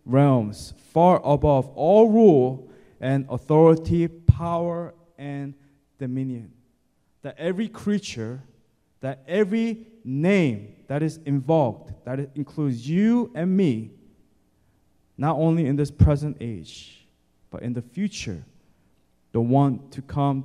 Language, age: English, 20-39